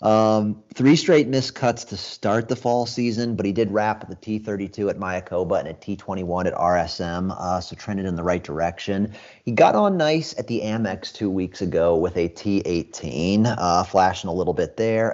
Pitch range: 90-110 Hz